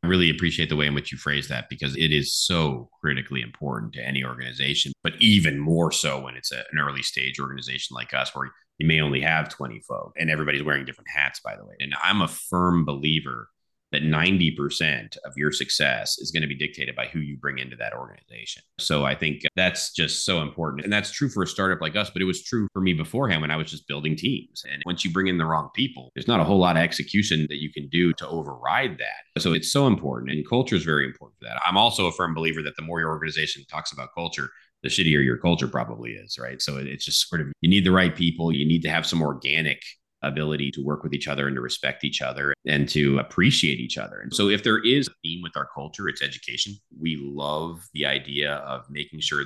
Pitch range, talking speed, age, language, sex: 70-85 Hz, 245 wpm, 30-49, English, male